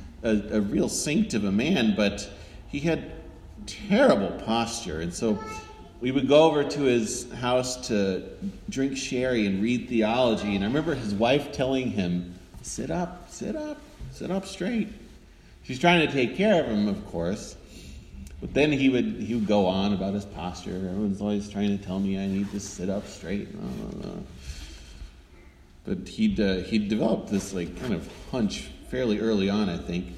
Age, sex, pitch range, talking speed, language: 30-49, male, 90-125 Hz, 180 wpm, English